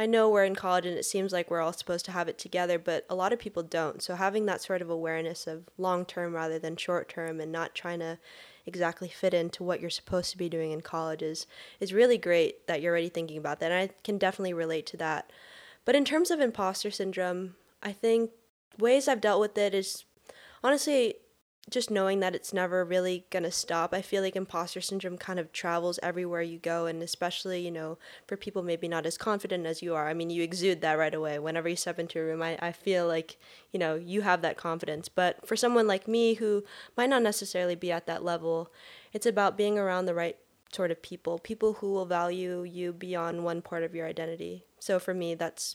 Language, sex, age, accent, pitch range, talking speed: English, female, 10-29, American, 165-195 Hz, 225 wpm